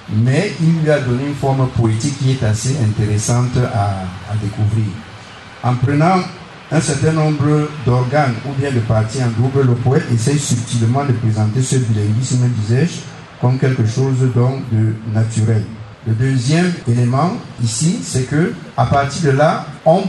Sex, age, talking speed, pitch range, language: male, 50-69, 160 wpm, 120-155 Hz, English